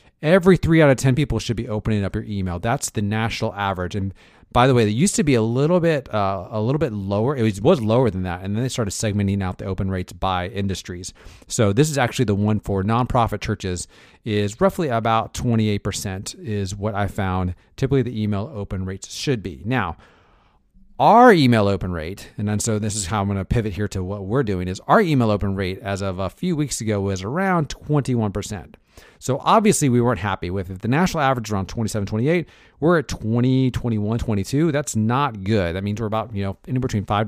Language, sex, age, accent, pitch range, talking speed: English, male, 30-49, American, 95-125 Hz, 220 wpm